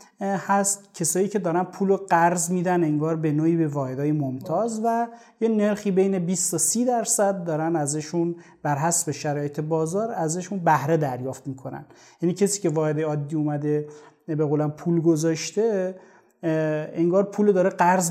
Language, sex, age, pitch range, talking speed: Persian, male, 30-49, 155-195 Hz, 150 wpm